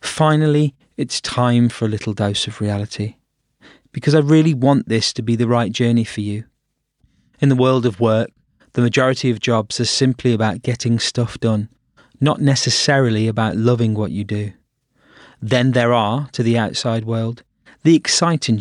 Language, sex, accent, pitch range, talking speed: English, male, British, 110-130 Hz, 170 wpm